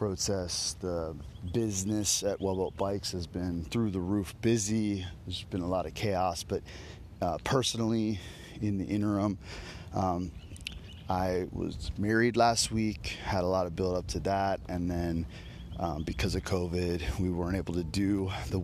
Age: 30-49